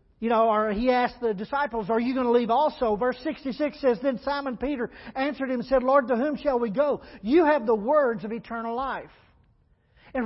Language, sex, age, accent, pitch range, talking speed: English, male, 50-69, American, 230-295 Hz, 215 wpm